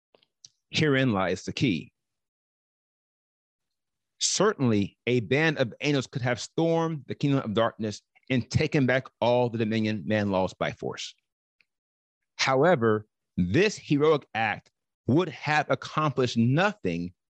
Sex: male